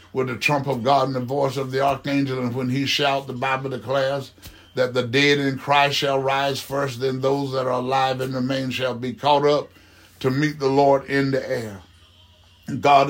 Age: 60-79